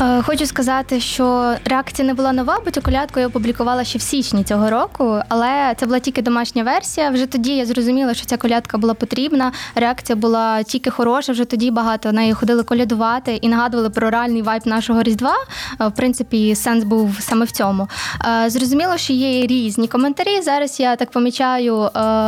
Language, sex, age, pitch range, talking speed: Ukrainian, female, 20-39, 230-260 Hz, 180 wpm